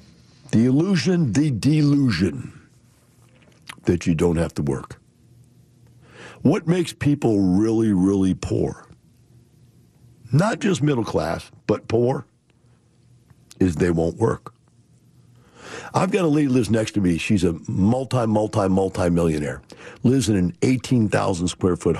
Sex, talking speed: male, 120 wpm